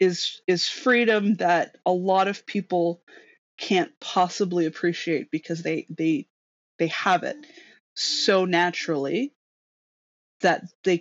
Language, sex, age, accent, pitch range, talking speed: English, female, 20-39, American, 160-205 Hz, 115 wpm